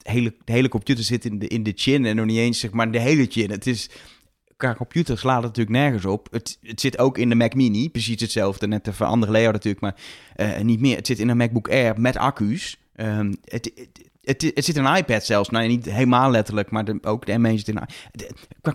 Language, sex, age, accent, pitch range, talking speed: Dutch, male, 20-39, Dutch, 100-120 Hz, 250 wpm